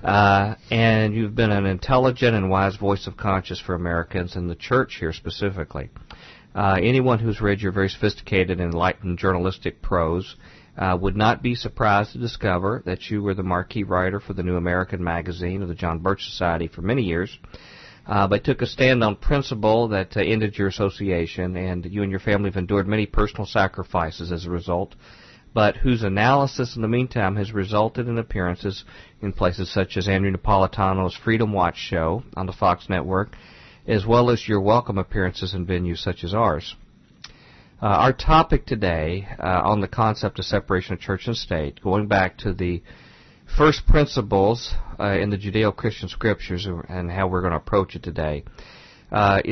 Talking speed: 180 wpm